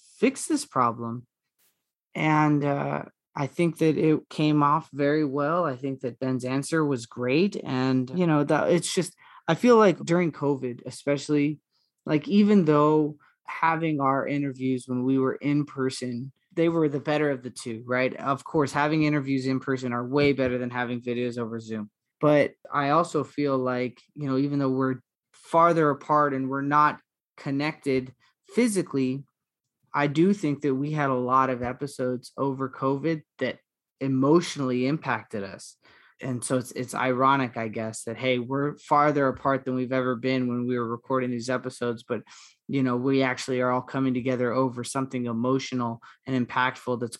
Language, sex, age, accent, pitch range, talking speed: English, male, 20-39, American, 125-145 Hz, 170 wpm